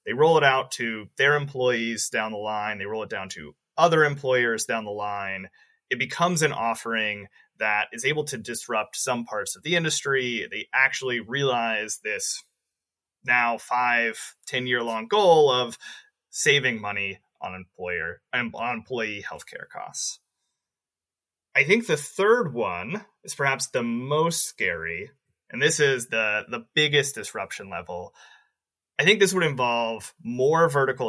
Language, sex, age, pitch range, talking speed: English, male, 30-49, 115-155 Hz, 145 wpm